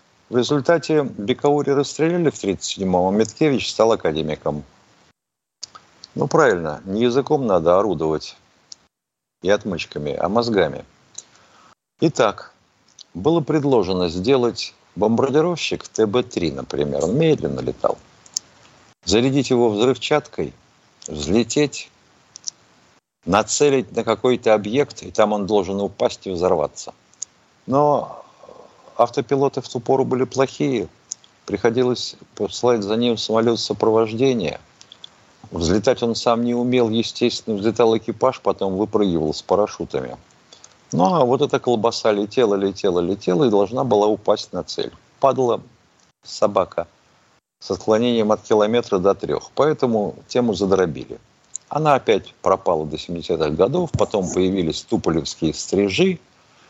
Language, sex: Russian, male